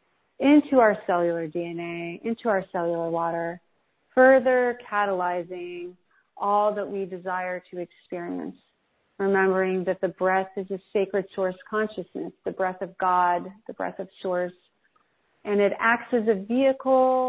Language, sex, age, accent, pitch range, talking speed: English, female, 30-49, American, 180-235 Hz, 135 wpm